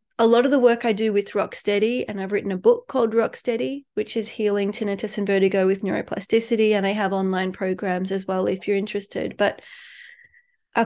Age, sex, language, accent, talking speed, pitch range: 30-49, female, English, Australian, 200 wpm, 195-240 Hz